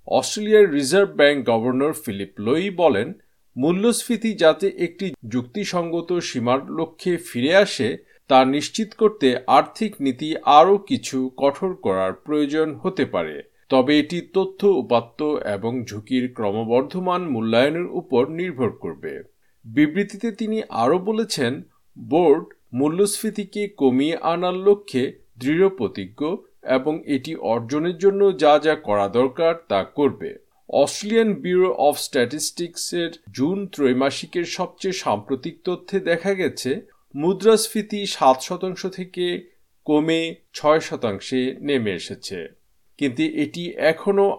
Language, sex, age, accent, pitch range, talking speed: Bengali, male, 50-69, native, 135-195 Hz, 110 wpm